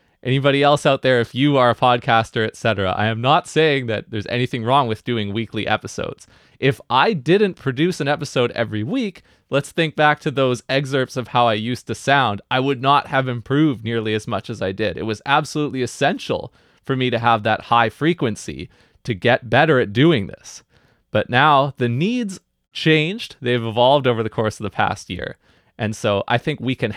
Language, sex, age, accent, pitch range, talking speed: English, male, 20-39, American, 110-140 Hz, 200 wpm